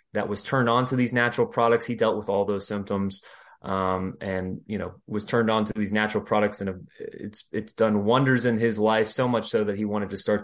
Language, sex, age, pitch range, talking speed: English, male, 20-39, 105-125 Hz, 235 wpm